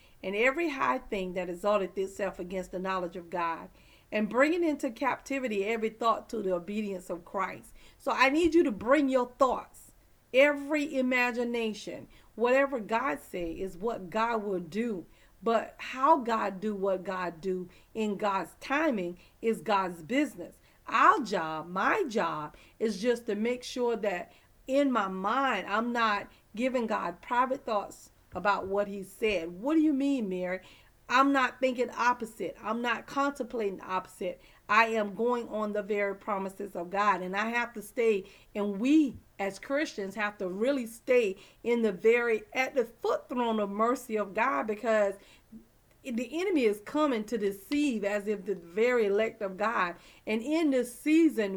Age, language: 40-59, English